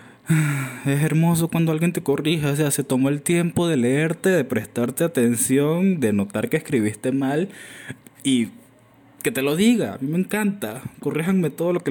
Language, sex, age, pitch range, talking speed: Spanish, male, 20-39, 115-160 Hz, 175 wpm